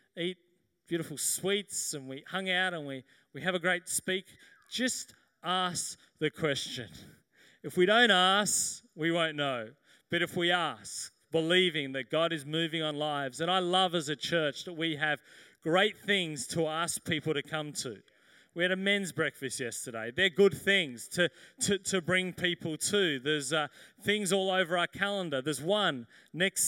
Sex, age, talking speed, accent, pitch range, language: male, 30-49, 175 wpm, Australian, 155-195 Hz, English